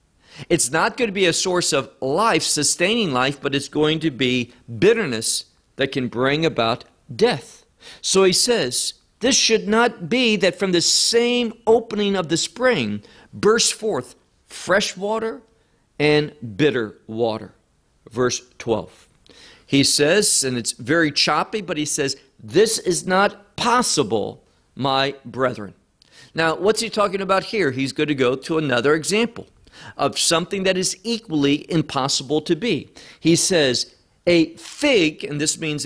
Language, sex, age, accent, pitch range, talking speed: English, male, 50-69, American, 135-210 Hz, 150 wpm